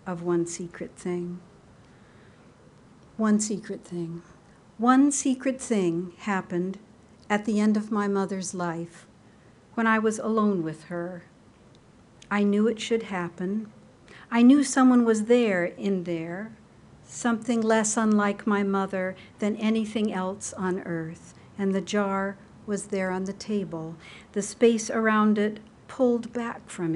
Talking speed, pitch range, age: 135 wpm, 190-220 Hz, 60-79